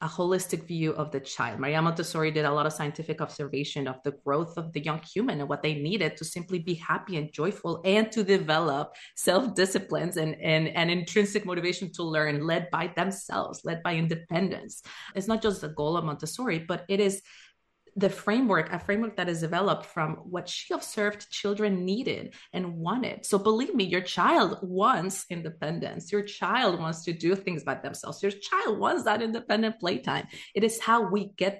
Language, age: English, 30-49